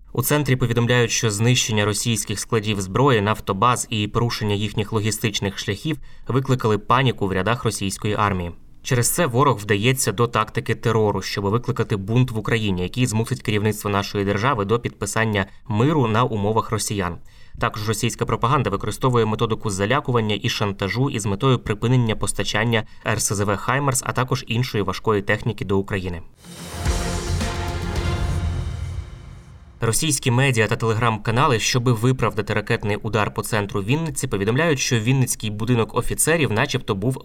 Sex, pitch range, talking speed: male, 105-120 Hz, 130 wpm